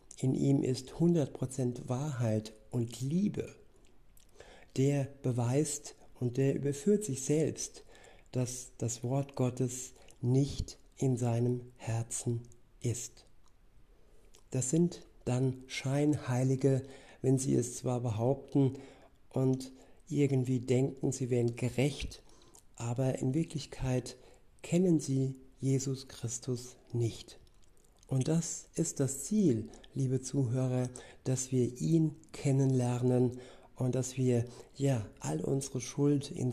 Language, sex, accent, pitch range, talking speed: German, male, German, 120-135 Hz, 105 wpm